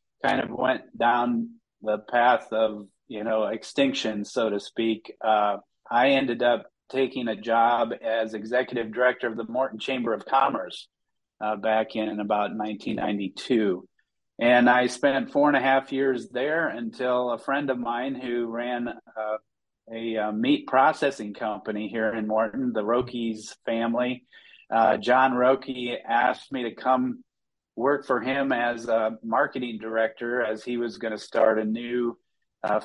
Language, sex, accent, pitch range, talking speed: English, male, American, 110-125 Hz, 155 wpm